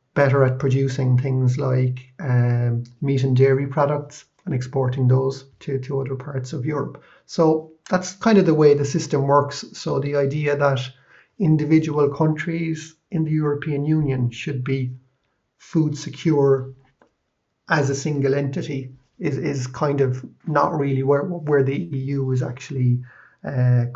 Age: 30-49